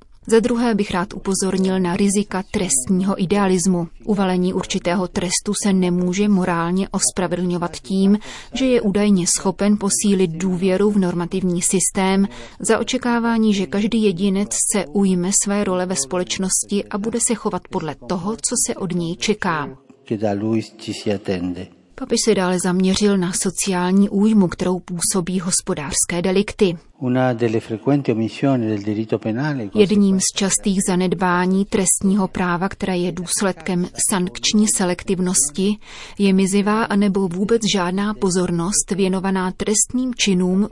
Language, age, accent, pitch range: Czech, 30-49, native, 180-205 Hz